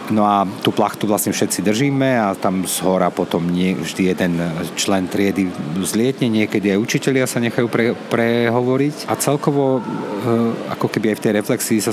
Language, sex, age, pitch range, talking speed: Slovak, male, 40-59, 95-115 Hz, 170 wpm